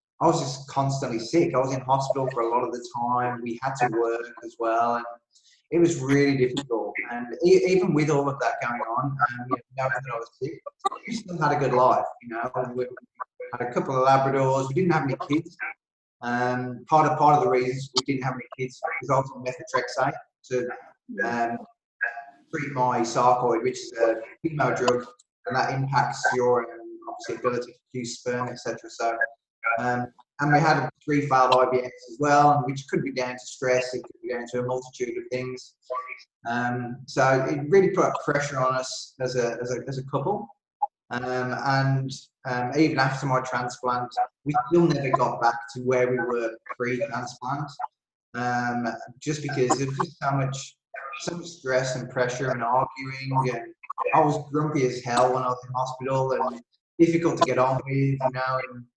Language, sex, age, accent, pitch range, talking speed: English, male, 20-39, British, 125-145 Hz, 190 wpm